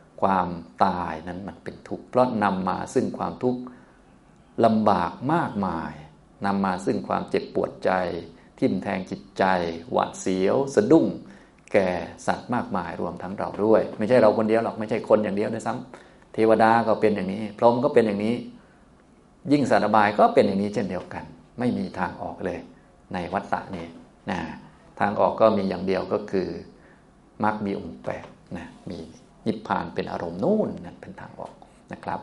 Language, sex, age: Thai, male, 20-39